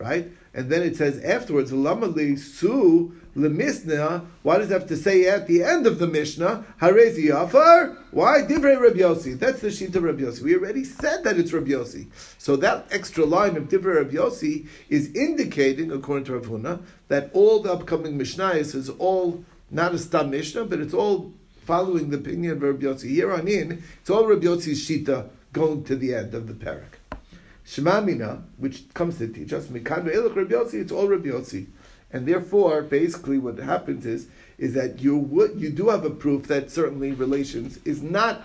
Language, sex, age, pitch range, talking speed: English, male, 50-69, 135-185 Hz, 170 wpm